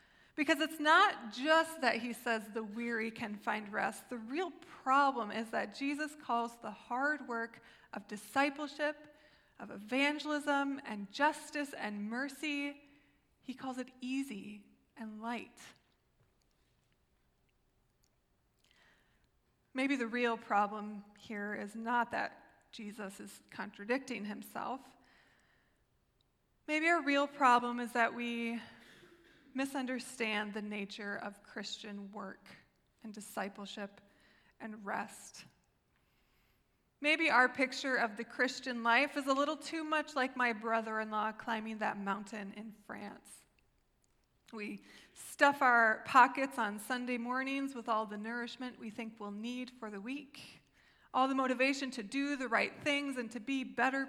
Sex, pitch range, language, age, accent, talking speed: female, 220-275 Hz, English, 20-39, American, 130 wpm